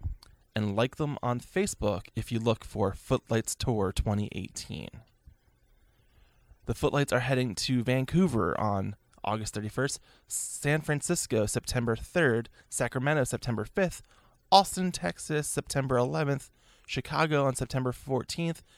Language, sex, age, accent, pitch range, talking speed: English, male, 20-39, American, 105-145 Hz, 115 wpm